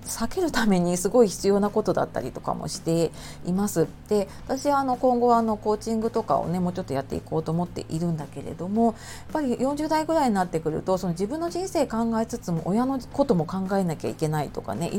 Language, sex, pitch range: Japanese, female, 170-245 Hz